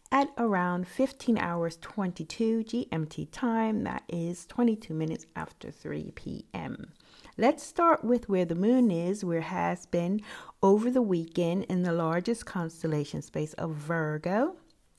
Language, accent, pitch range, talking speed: English, American, 150-195 Hz, 140 wpm